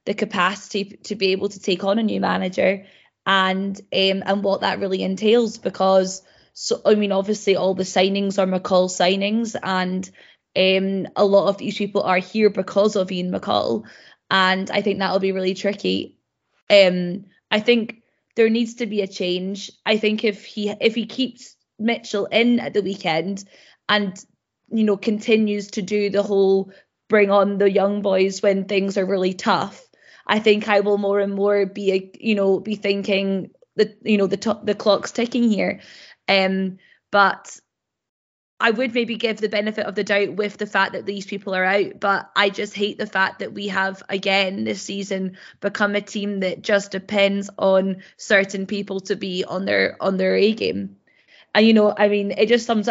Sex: female